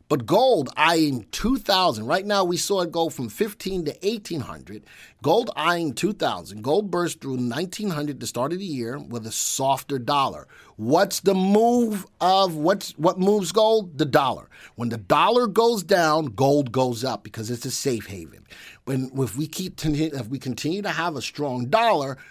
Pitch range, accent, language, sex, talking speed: 135-195 Hz, American, English, male, 175 wpm